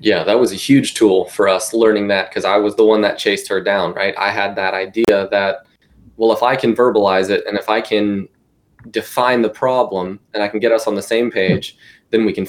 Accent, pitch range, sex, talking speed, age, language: American, 100-115 Hz, male, 240 wpm, 20-39, English